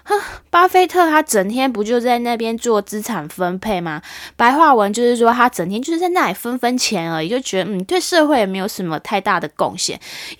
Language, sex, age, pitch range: Chinese, female, 10-29, 195-265 Hz